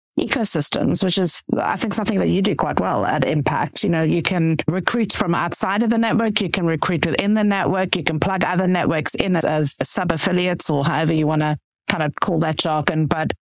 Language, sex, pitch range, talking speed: English, female, 160-195 Hz, 220 wpm